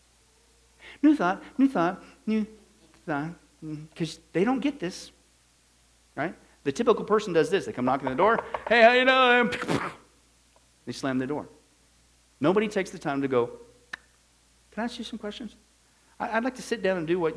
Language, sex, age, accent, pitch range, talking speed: English, male, 50-69, American, 155-240 Hz, 175 wpm